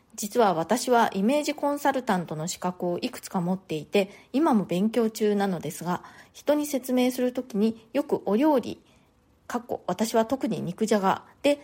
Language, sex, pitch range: Japanese, female, 195-260 Hz